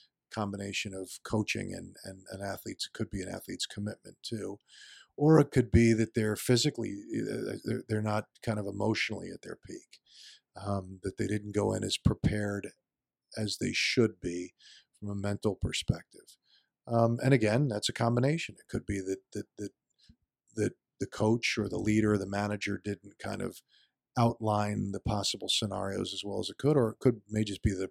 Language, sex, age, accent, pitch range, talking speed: English, male, 50-69, American, 100-125 Hz, 190 wpm